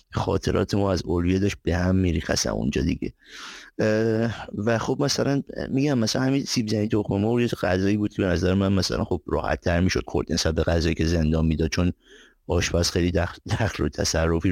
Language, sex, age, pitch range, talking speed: Persian, male, 50-69, 85-110 Hz, 180 wpm